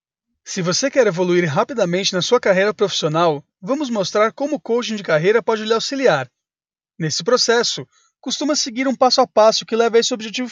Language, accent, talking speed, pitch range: Portuguese, Brazilian, 185 wpm, 180-250 Hz